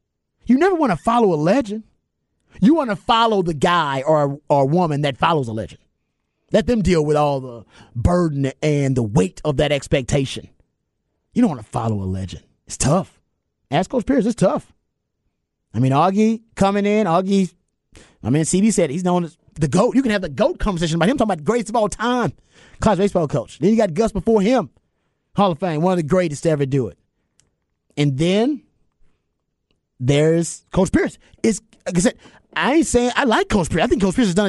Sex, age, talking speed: male, 30-49, 205 wpm